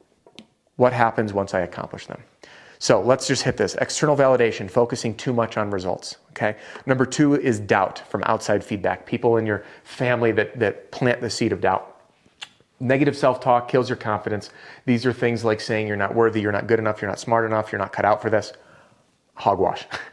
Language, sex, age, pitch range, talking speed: English, male, 30-49, 105-125 Hz, 195 wpm